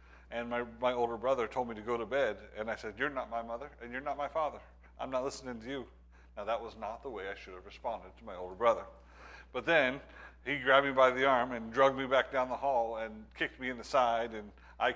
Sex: male